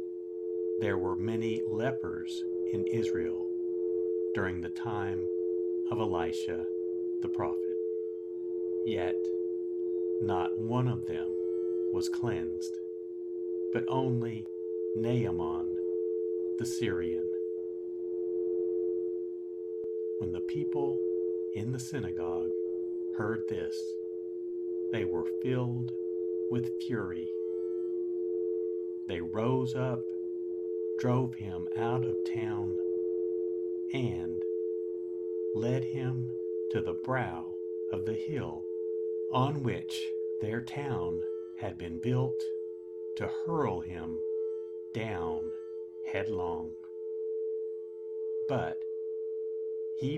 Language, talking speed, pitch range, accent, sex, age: English, 85 wpm, 90-115 Hz, American, male, 50-69